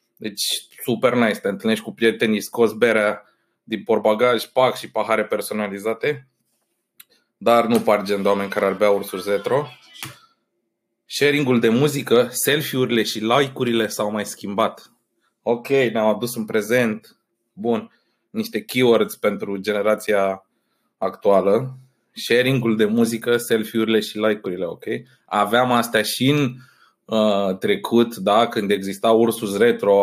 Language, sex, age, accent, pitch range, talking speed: Romanian, male, 20-39, native, 105-120 Hz, 130 wpm